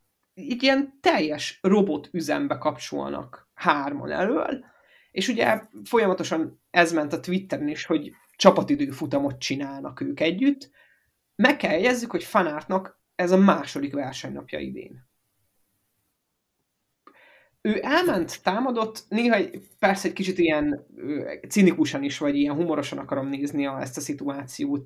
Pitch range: 145-200 Hz